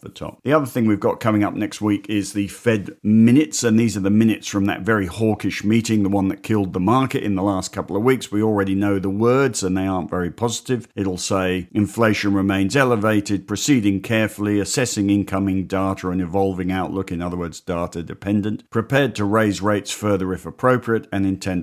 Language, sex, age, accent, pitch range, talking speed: English, male, 50-69, British, 95-110 Hz, 205 wpm